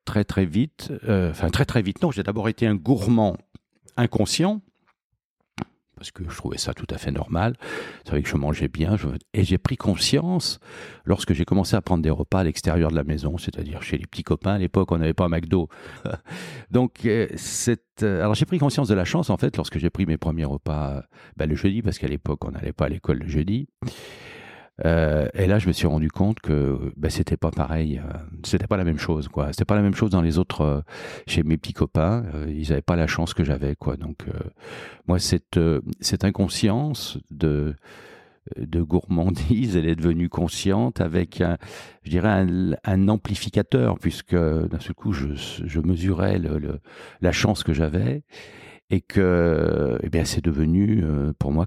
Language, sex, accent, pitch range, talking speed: French, male, French, 80-105 Hz, 195 wpm